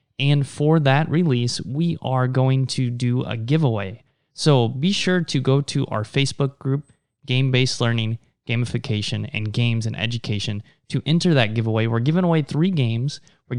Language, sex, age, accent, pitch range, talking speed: English, male, 20-39, American, 120-155 Hz, 170 wpm